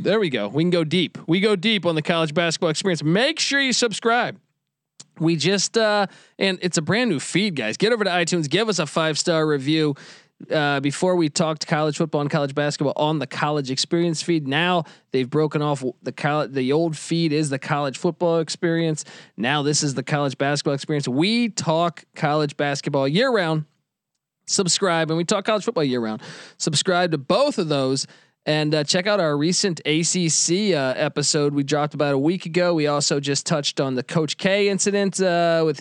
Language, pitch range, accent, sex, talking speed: English, 145-180 Hz, American, male, 200 wpm